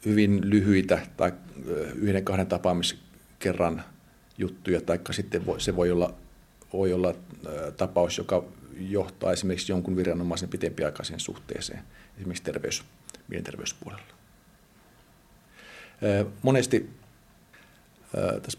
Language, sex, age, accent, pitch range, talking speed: Finnish, male, 50-69, native, 95-105 Hz, 95 wpm